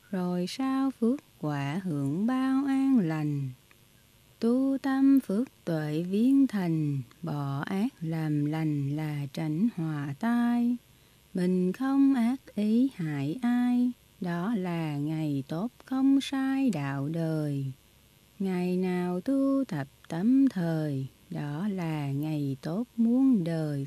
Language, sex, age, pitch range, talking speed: Vietnamese, female, 20-39, 155-240 Hz, 120 wpm